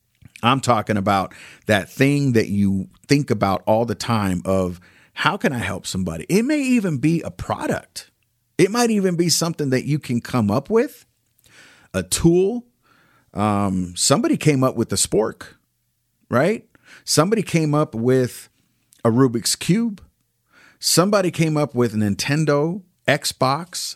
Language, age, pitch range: English, 40-59, 105-140 Hz